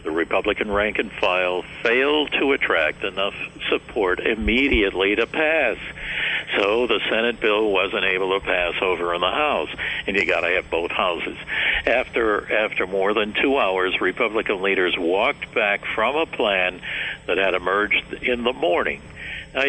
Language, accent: English, American